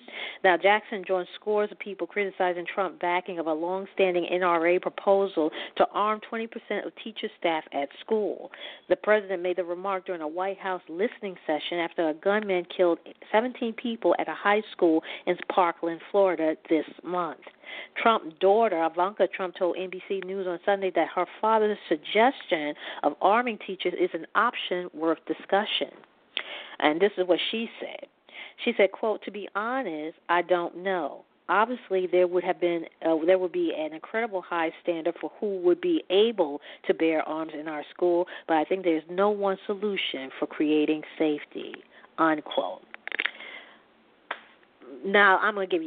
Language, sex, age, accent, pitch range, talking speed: English, female, 40-59, American, 170-205 Hz, 160 wpm